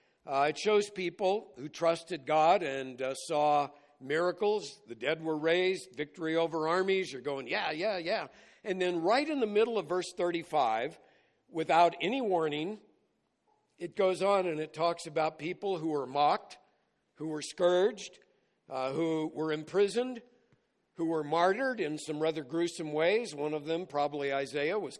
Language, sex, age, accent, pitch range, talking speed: English, male, 60-79, American, 145-185 Hz, 160 wpm